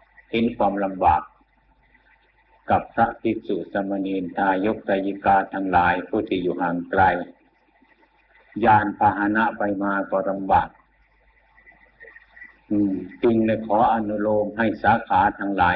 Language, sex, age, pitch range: Thai, male, 60-79, 95-110 Hz